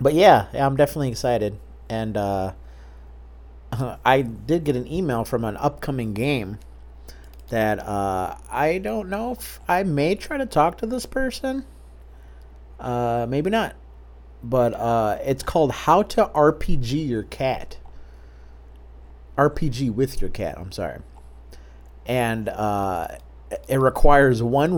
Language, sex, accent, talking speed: English, male, American, 130 wpm